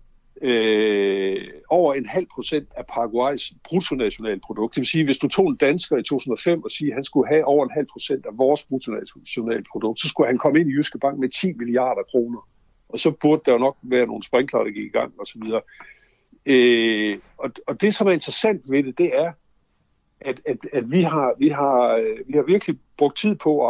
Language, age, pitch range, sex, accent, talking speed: Danish, 60-79, 130-180 Hz, male, native, 215 wpm